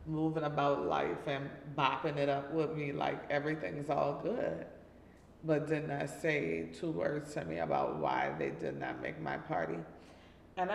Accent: American